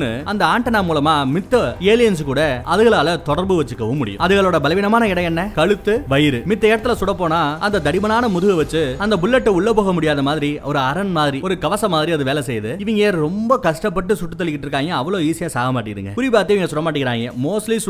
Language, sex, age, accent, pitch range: Tamil, male, 20-39, native, 140-195 Hz